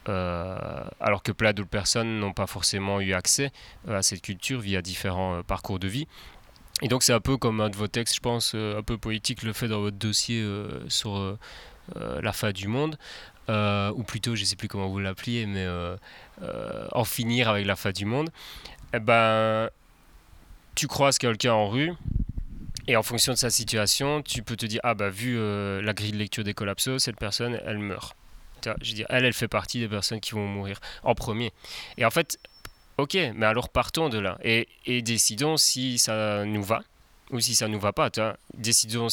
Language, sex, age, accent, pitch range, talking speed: French, male, 30-49, French, 100-120 Hz, 215 wpm